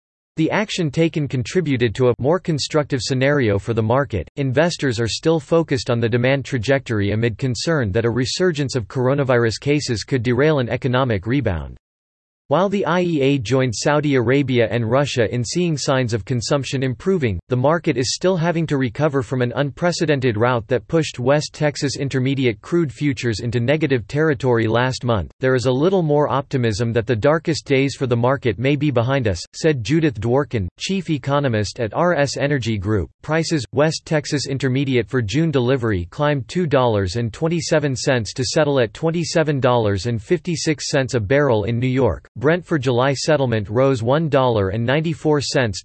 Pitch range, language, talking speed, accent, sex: 120-150 Hz, English, 155 wpm, American, male